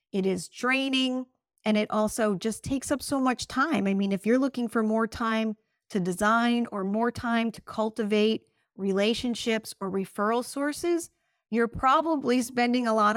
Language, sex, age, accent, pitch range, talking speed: English, female, 40-59, American, 200-240 Hz, 165 wpm